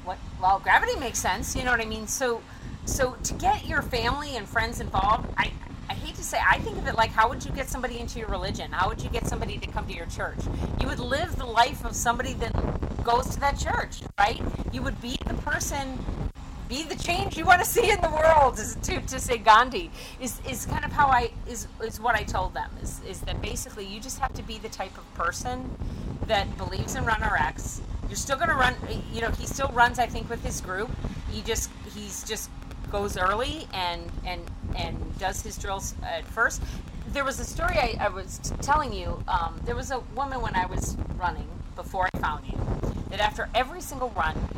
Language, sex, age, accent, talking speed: English, female, 40-59, American, 225 wpm